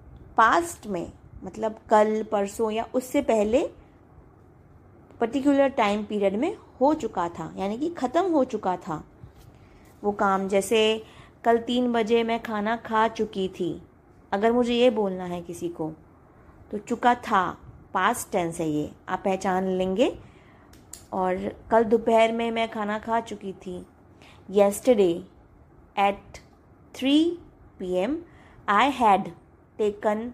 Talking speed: 130 wpm